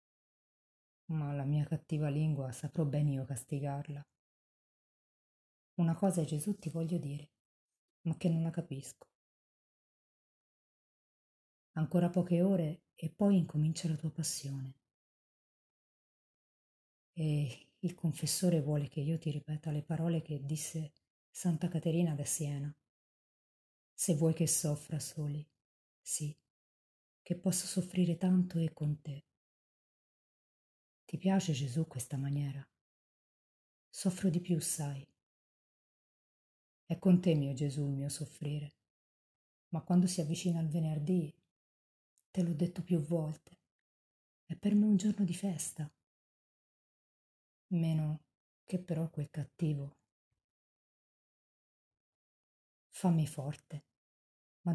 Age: 30-49